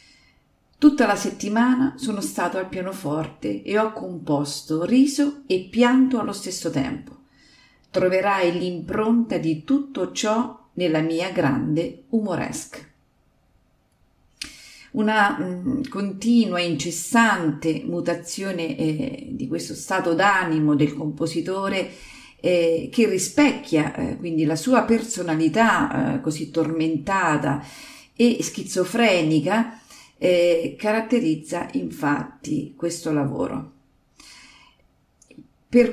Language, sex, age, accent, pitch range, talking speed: Italian, female, 40-59, native, 165-230 Hz, 95 wpm